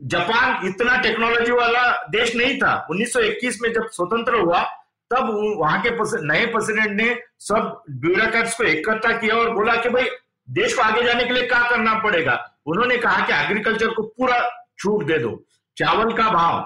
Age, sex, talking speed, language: 50-69, male, 175 wpm, Hindi